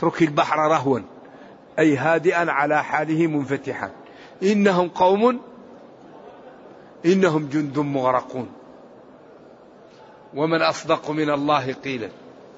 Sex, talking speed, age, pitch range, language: male, 85 wpm, 60-79, 150-205 Hz, Arabic